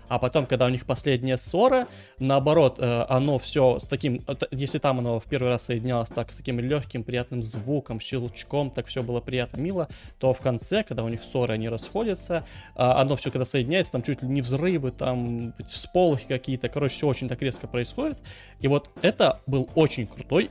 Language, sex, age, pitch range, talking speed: Russian, male, 20-39, 115-135 Hz, 185 wpm